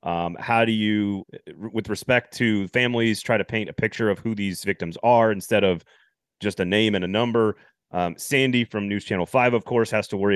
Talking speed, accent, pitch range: 215 wpm, American, 100-120 Hz